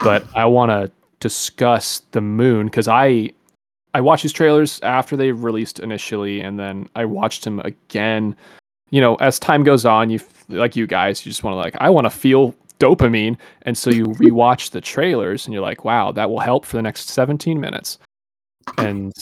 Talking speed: 195 wpm